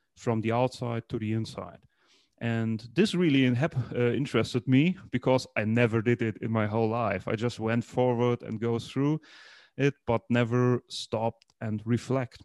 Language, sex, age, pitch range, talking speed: English, male, 30-49, 115-135 Hz, 165 wpm